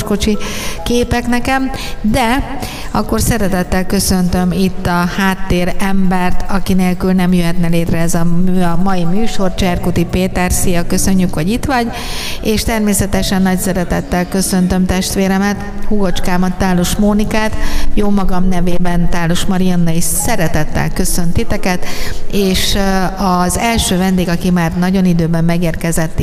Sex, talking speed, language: female, 120 wpm, Hungarian